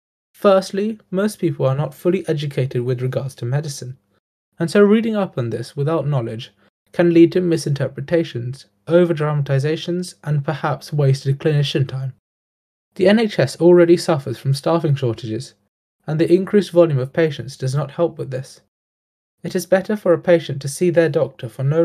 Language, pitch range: English, 130-170 Hz